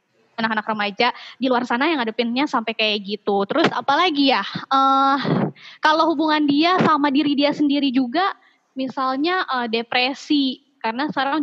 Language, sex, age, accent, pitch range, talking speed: Indonesian, female, 20-39, native, 225-280 Hz, 140 wpm